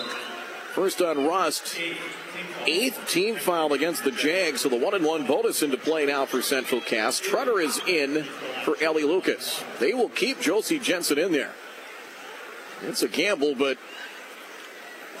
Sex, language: male, English